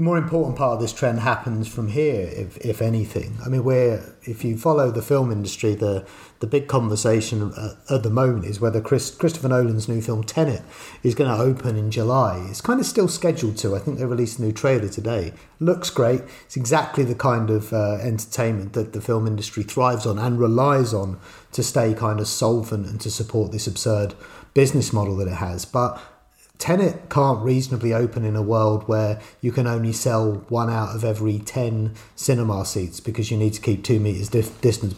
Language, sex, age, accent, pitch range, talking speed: English, male, 30-49, British, 110-130 Hz, 205 wpm